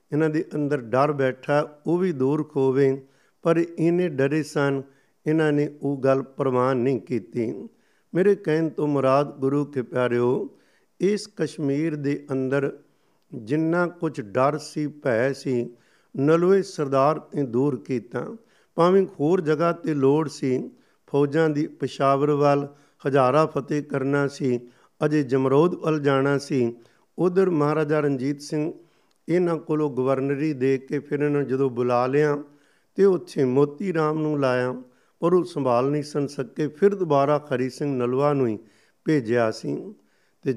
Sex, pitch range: male, 135-155 Hz